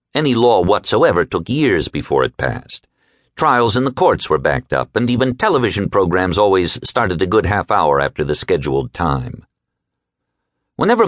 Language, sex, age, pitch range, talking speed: English, male, 50-69, 85-130 Hz, 160 wpm